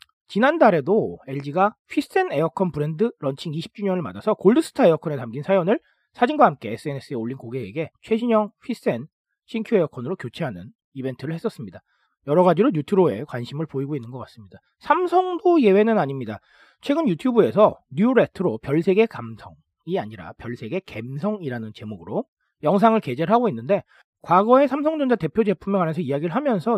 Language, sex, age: Korean, male, 40-59